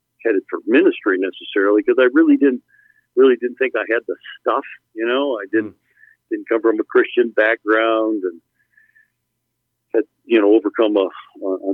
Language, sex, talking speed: English, male, 165 wpm